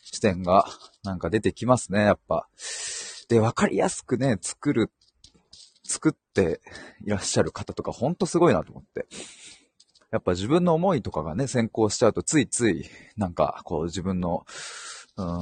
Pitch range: 90-125 Hz